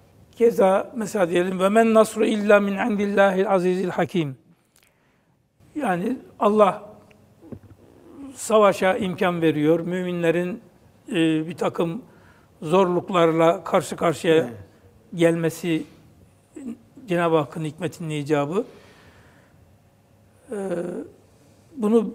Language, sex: Turkish, male